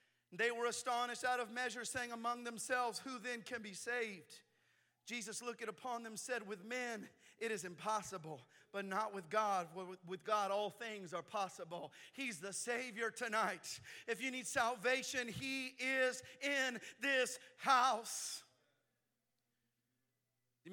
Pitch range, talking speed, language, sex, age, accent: 210-260 Hz, 140 wpm, English, male, 40-59, American